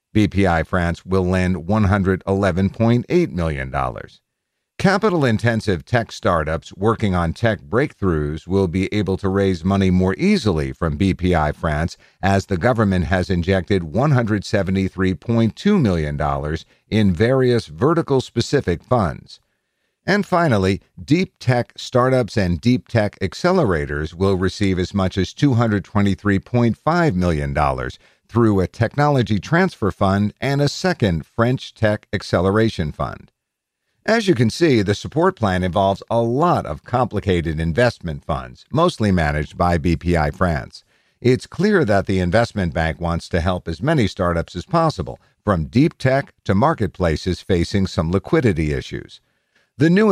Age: 50-69